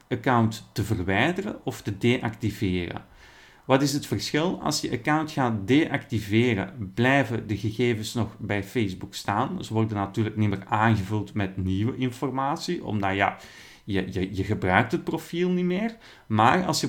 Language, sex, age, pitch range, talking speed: Dutch, male, 40-59, 105-140 Hz, 155 wpm